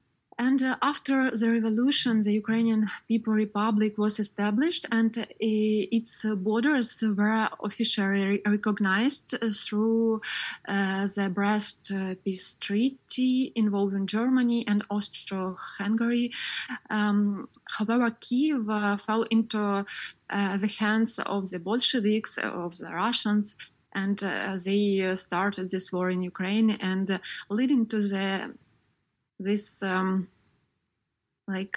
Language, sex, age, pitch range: English, female, 20-39, 195-230 Hz